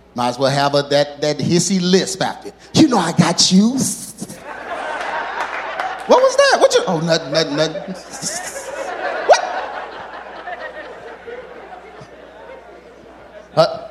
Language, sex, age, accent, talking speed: English, male, 30-49, American, 110 wpm